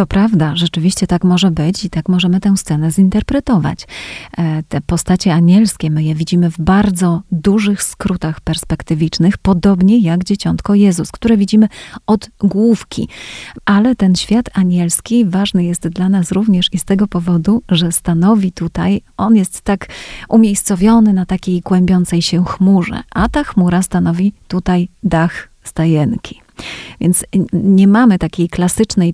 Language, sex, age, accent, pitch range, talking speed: Polish, female, 30-49, native, 175-205 Hz, 140 wpm